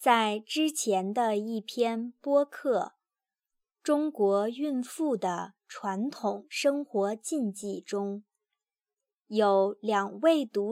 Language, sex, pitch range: Chinese, male, 200-295 Hz